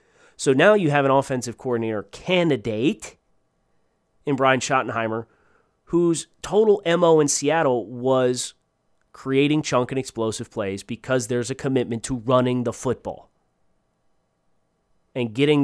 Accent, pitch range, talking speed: American, 120-165 Hz, 125 wpm